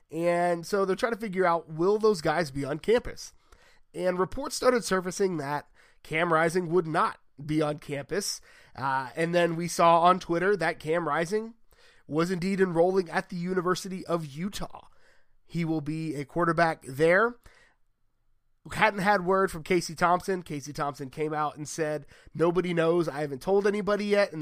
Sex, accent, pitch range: male, American, 150-190 Hz